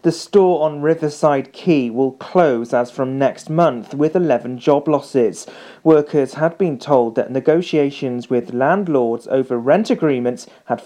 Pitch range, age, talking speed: 125-160 Hz, 40-59, 150 wpm